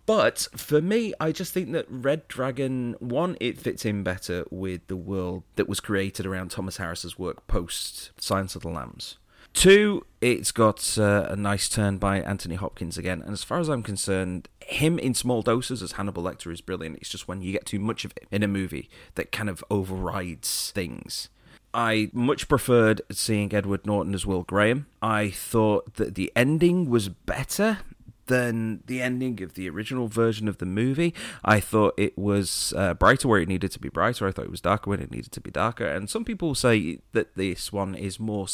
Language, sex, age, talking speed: English, male, 30-49, 200 wpm